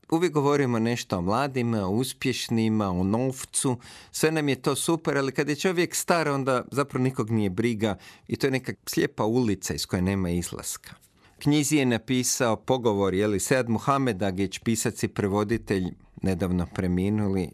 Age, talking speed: 50-69, 160 wpm